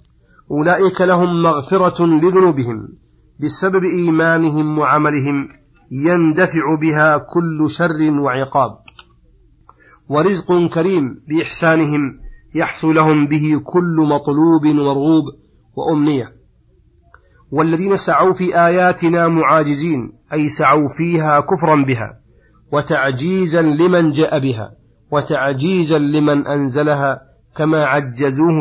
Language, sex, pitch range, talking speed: Arabic, male, 145-160 Hz, 85 wpm